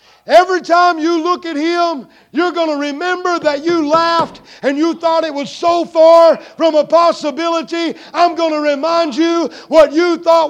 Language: English